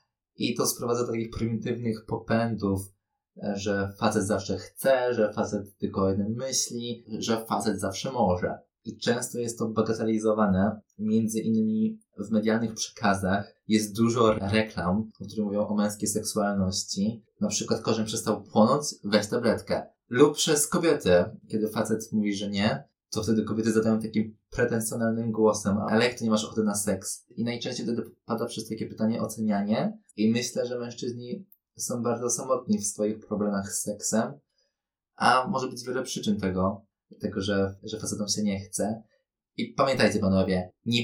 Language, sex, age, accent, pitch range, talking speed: Polish, male, 20-39, native, 100-115 Hz, 155 wpm